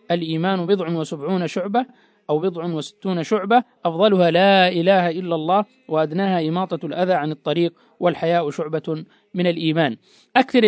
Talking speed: 130 wpm